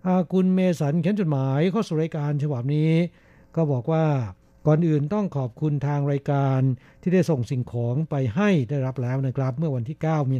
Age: 60-79